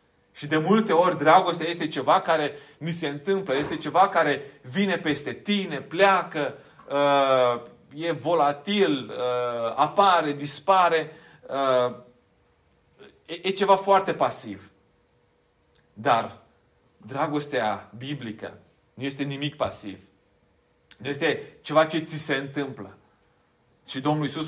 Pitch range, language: 135-175 Hz, Romanian